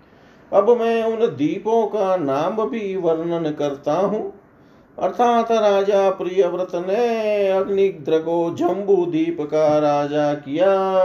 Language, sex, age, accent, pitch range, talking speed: Hindi, male, 40-59, native, 140-200 Hz, 115 wpm